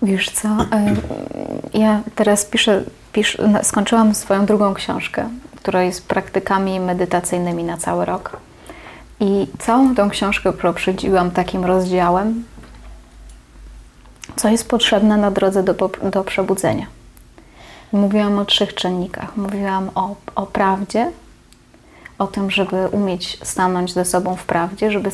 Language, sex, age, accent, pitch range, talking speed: Polish, female, 20-39, native, 180-210 Hz, 120 wpm